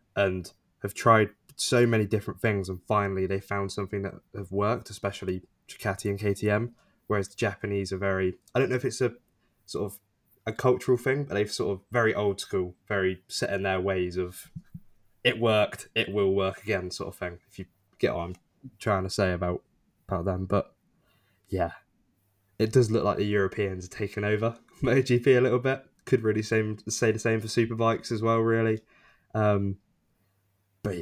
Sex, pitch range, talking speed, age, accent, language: male, 95-115 Hz, 180 wpm, 10-29, British, English